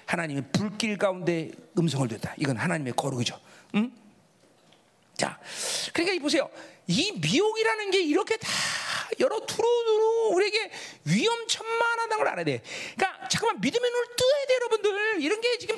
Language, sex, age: Korean, male, 40-59